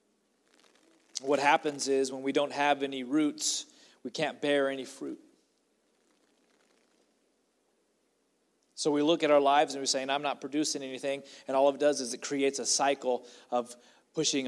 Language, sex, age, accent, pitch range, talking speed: English, male, 30-49, American, 125-150 Hz, 155 wpm